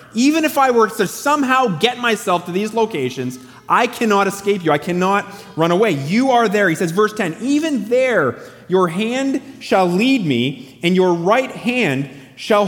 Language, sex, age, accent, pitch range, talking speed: English, male, 30-49, American, 155-230 Hz, 180 wpm